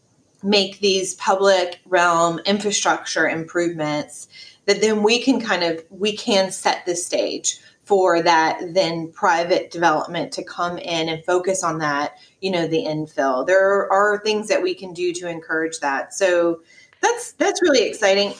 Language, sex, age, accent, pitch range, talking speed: English, female, 30-49, American, 175-215 Hz, 155 wpm